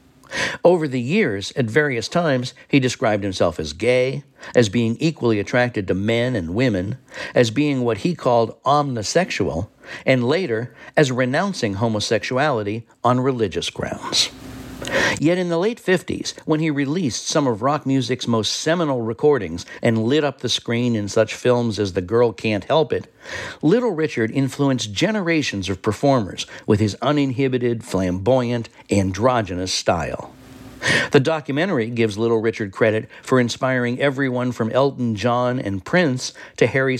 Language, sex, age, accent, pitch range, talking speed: English, male, 60-79, American, 110-145 Hz, 145 wpm